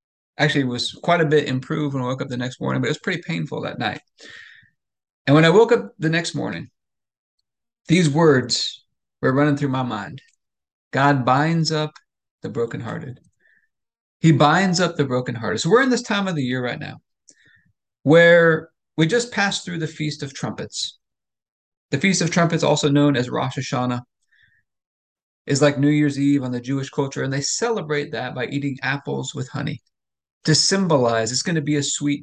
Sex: male